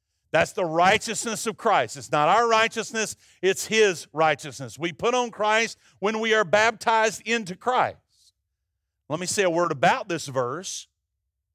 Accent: American